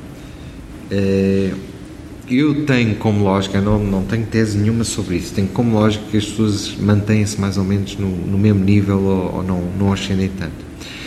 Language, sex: Portuguese, male